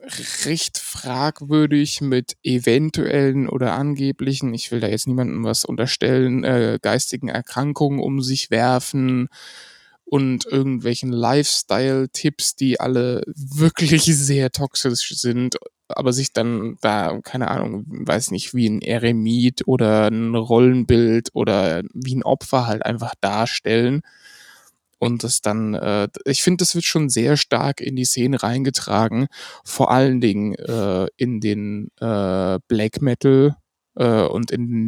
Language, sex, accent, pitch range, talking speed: German, male, German, 115-135 Hz, 130 wpm